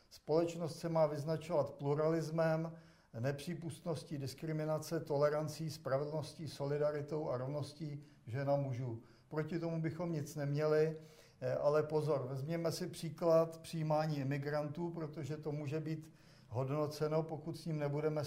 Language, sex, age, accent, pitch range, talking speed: Czech, male, 50-69, native, 140-155 Hz, 115 wpm